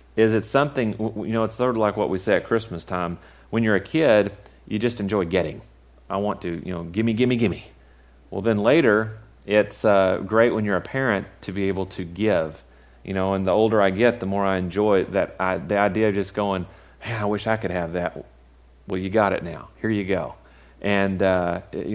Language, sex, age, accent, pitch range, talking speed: English, male, 40-59, American, 85-115 Hz, 220 wpm